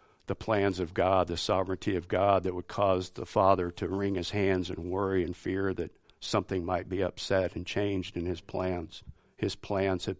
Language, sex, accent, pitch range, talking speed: English, male, American, 90-100 Hz, 200 wpm